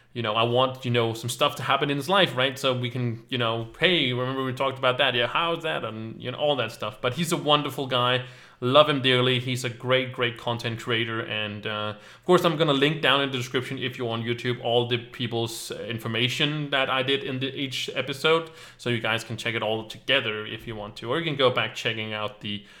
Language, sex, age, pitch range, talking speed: English, male, 20-39, 115-140 Hz, 245 wpm